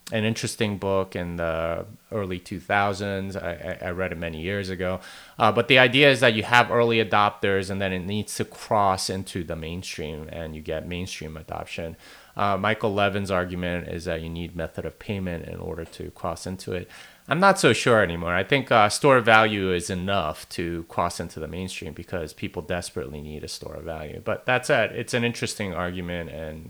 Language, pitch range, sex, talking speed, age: English, 90-115 Hz, male, 200 wpm, 30-49